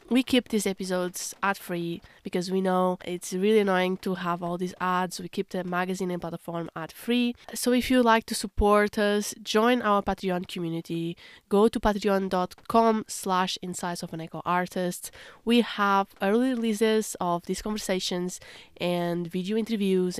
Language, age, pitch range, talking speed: English, 20-39, 180-220 Hz, 145 wpm